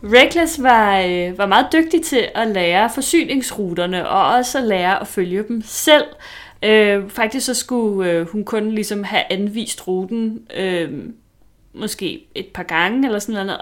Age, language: 30-49, Danish